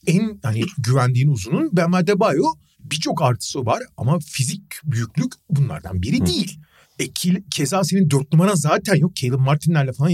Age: 40-59